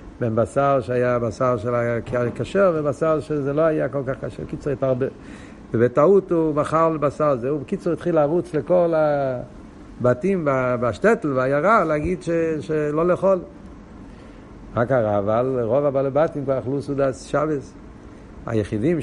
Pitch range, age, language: 120-155 Hz, 60-79, Hebrew